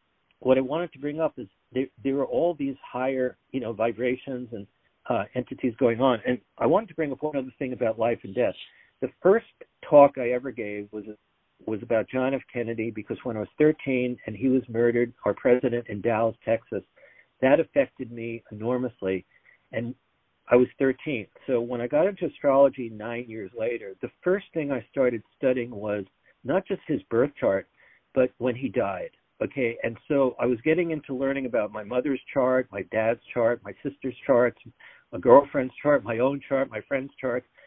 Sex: male